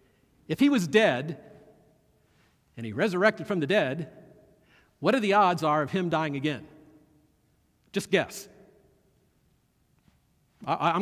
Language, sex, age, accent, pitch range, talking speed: English, male, 50-69, American, 175-260 Hz, 125 wpm